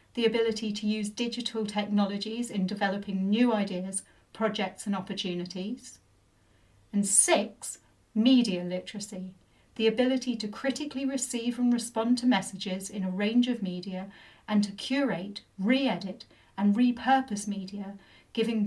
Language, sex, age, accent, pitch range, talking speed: English, female, 40-59, British, 185-235 Hz, 125 wpm